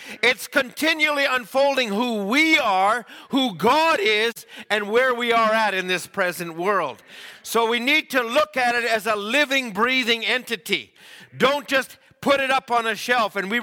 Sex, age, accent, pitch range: male, 50-69, American, 205-270 Hz